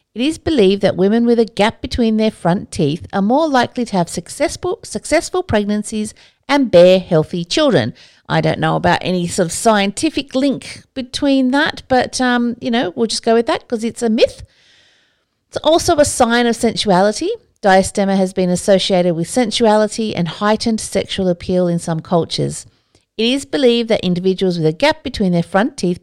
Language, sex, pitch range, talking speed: English, female, 170-240 Hz, 180 wpm